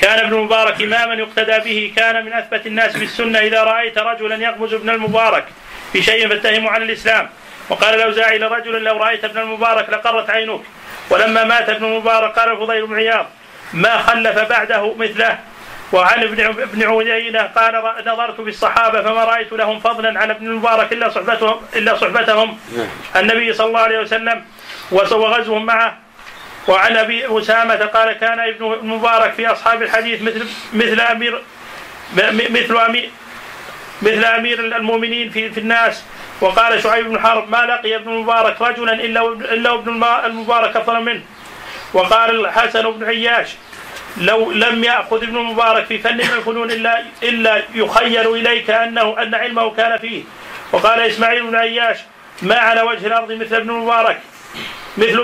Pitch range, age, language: 220-230 Hz, 30-49, Arabic